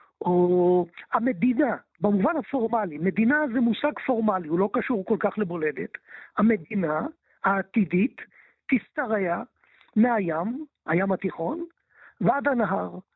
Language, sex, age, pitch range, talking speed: Hebrew, male, 50-69, 200-290 Hz, 100 wpm